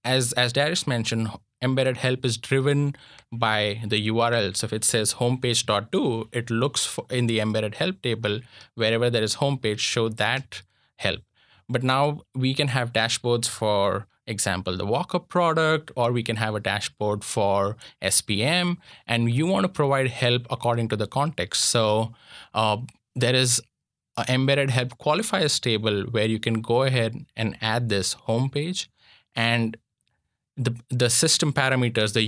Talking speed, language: 155 wpm, English